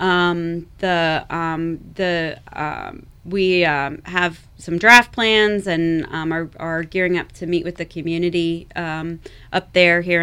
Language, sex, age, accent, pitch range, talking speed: English, female, 30-49, American, 160-185 Hz, 155 wpm